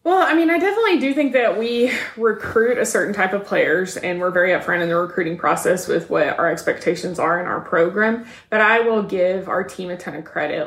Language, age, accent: English, 20-39, American